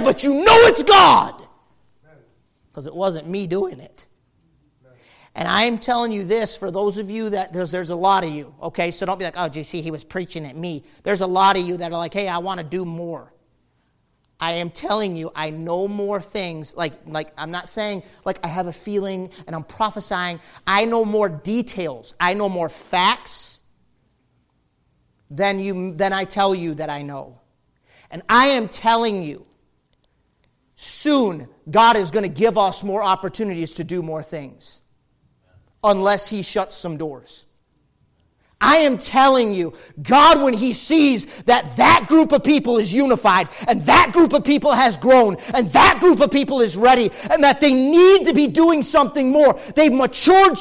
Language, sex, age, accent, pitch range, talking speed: English, male, 40-59, American, 165-255 Hz, 185 wpm